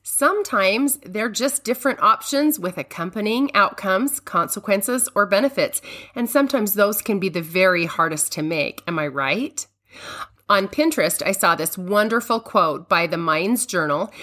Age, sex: 40-59, female